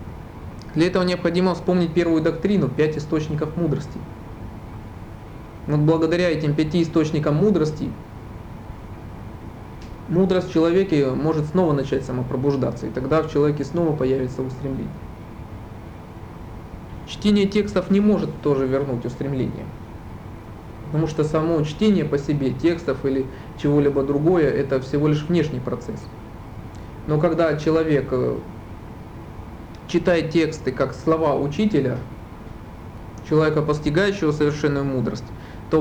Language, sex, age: Russian, male, 20-39